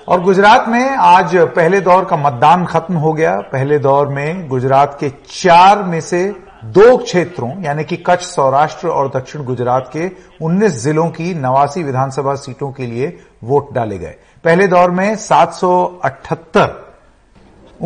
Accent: native